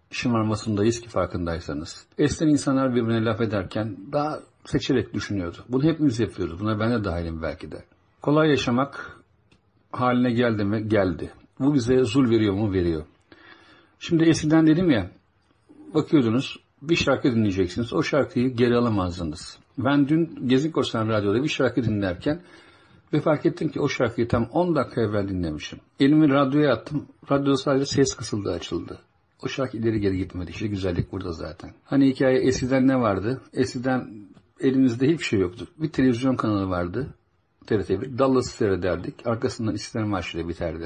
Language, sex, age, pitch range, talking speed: English, male, 60-79, 100-130 Hz, 145 wpm